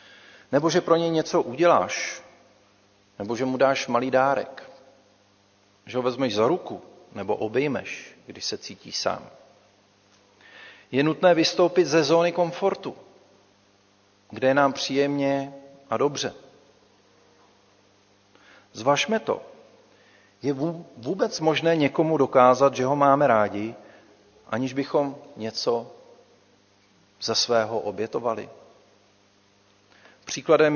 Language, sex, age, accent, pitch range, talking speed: Czech, male, 40-59, native, 100-145 Hz, 105 wpm